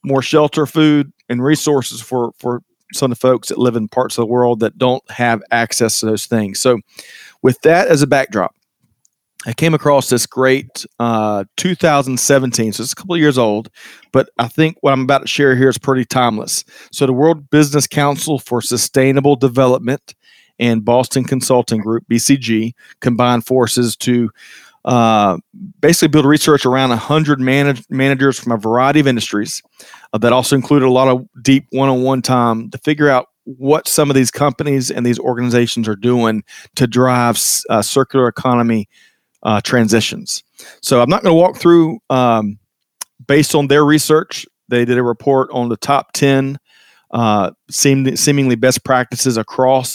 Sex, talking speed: male, 170 wpm